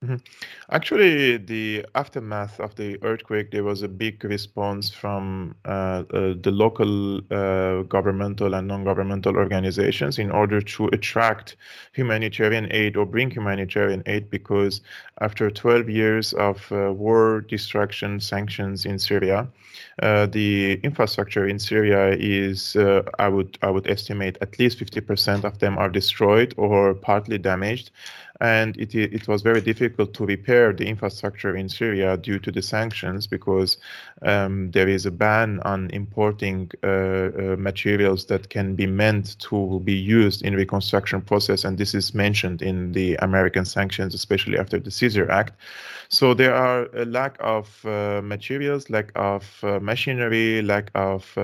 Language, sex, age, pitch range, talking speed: English, male, 30-49, 95-110 Hz, 150 wpm